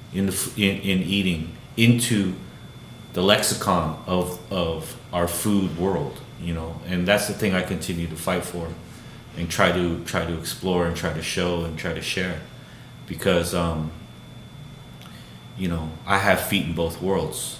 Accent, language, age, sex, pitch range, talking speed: American, English, 30-49, male, 85-105 Hz, 165 wpm